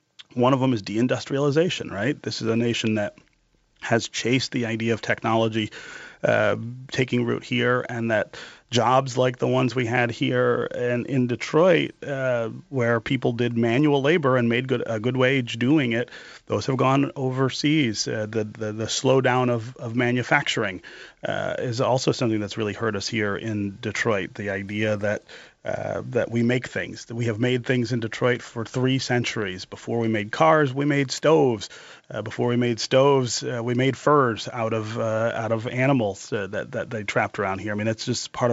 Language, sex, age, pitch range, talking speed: English, male, 30-49, 115-130 Hz, 190 wpm